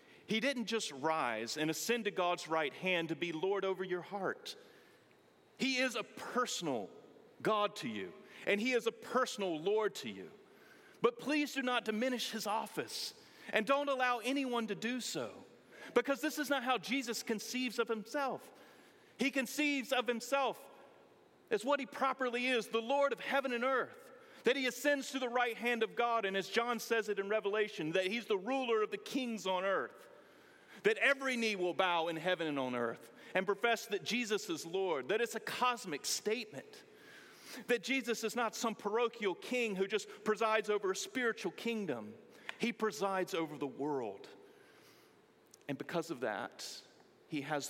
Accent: American